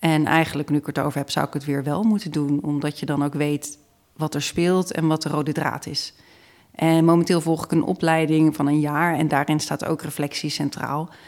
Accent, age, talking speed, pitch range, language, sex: Dutch, 40-59, 230 wpm, 150-170 Hz, Dutch, female